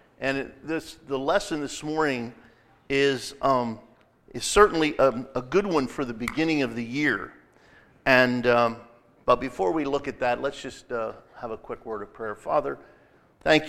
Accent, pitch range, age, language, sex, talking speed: American, 110-125 Hz, 50-69, English, male, 170 wpm